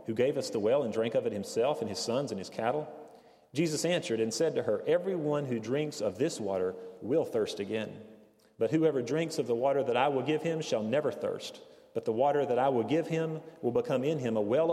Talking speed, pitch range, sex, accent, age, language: 240 wpm, 115-160 Hz, male, American, 40-59, English